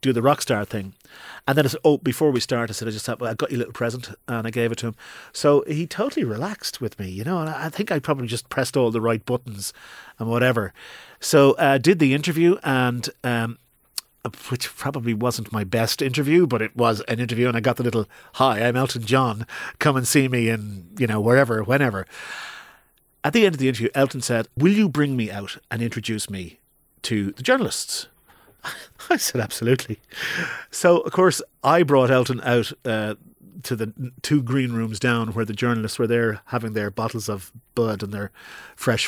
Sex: male